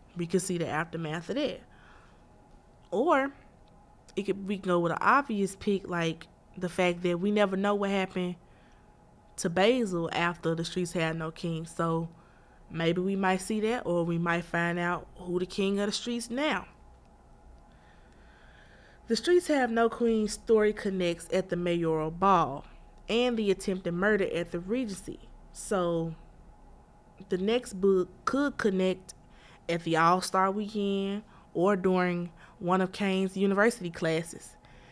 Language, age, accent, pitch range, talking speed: English, 20-39, American, 170-205 Hz, 145 wpm